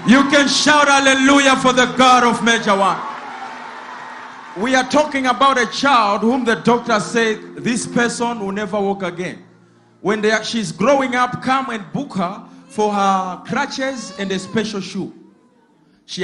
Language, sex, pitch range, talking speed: English, male, 190-255 Hz, 165 wpm